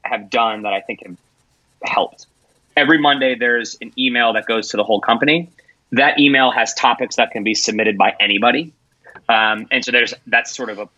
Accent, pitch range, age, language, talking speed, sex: American, 110-140 Hz, 30-49, English, 195 wpm, male